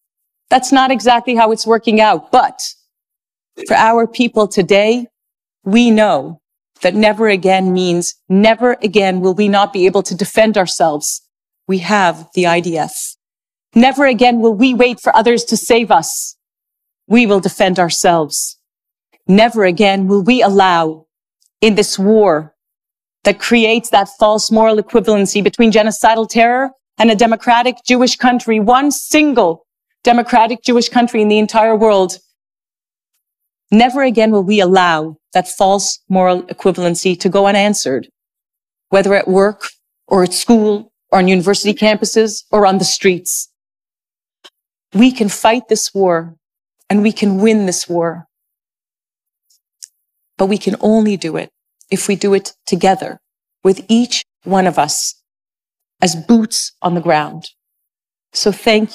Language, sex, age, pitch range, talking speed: English, female, 40-59, 185-225 Hz, 140 wpm